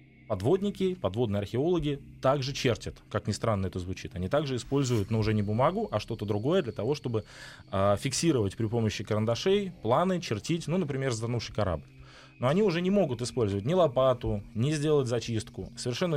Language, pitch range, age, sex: Russian, 100-135 Hz, 20-39, male